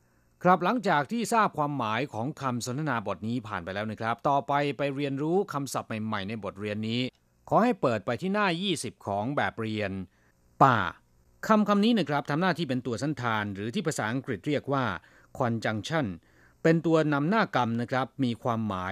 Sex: male